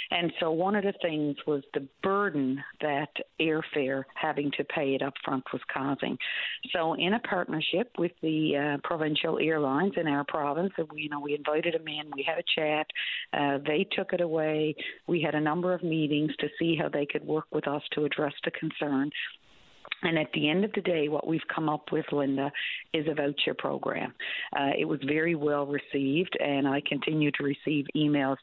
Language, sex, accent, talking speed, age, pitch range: English, female, American, 195 wpm, 50-69, 145-165 Hz